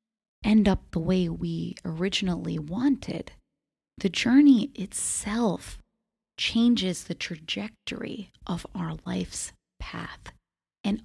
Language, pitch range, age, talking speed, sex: English, 175-250 Hz, 30-49, 100 wpm, female